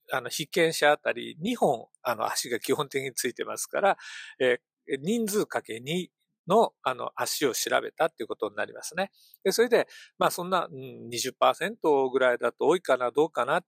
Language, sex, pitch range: Japanese, male, 145-225 Hz